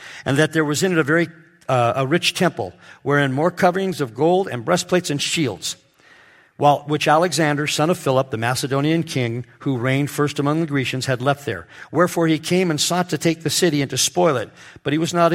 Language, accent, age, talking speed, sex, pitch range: English, American, 50-69, 215 wpm, male, 120-160 Hz